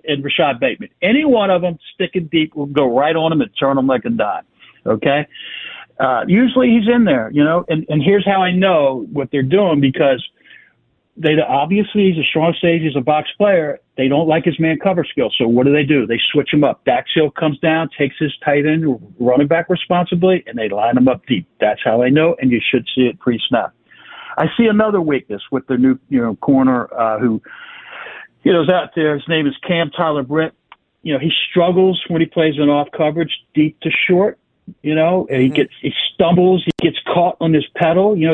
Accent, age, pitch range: American, 60-79, 145-190 Hz